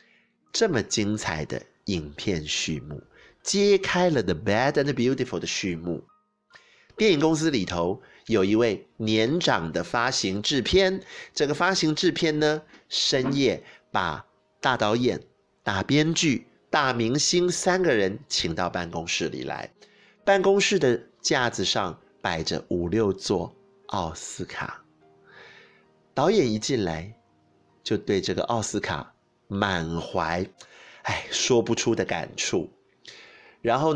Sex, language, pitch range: male, Chinese, 90-145 Hz